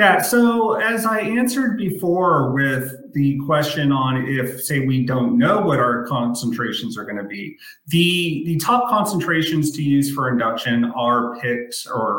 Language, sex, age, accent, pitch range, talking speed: English, male, 30-49, American, 120-155 Hz, 160 wpm